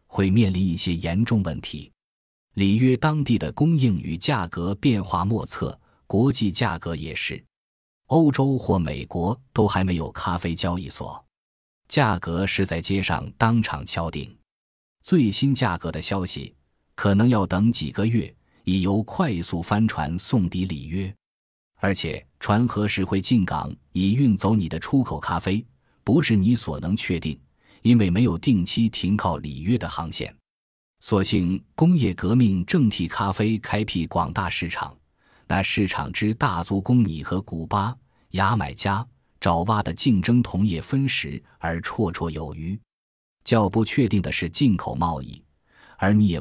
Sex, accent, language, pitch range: male, native, Chinese, 85-115 Hz